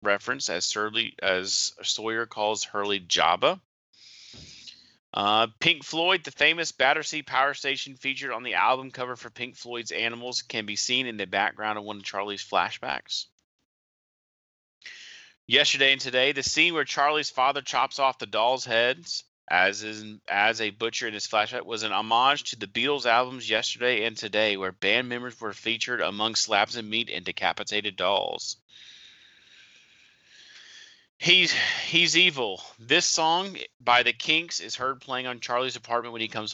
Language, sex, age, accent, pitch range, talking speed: English, male, 30-49, American, 110-135 Hz, 160 wpm